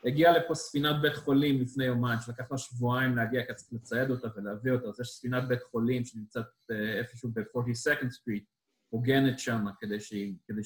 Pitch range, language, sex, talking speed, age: 115-140 Hz, Hebrew, male, 165 wpm, 20-39